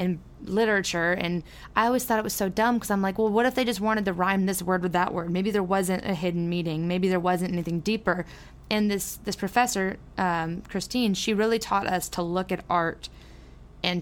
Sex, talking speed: female, 220 wpm